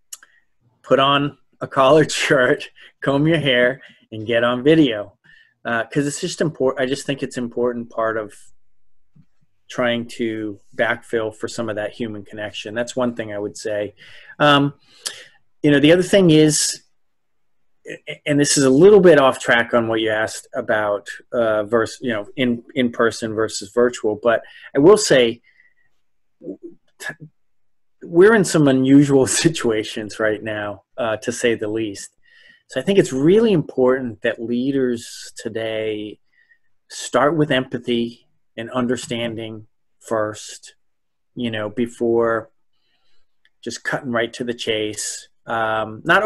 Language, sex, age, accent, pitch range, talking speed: English, male, 30-49, American, 110-140 Hz, 145 wpm